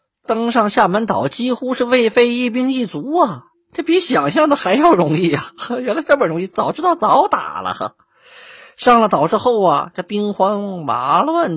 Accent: native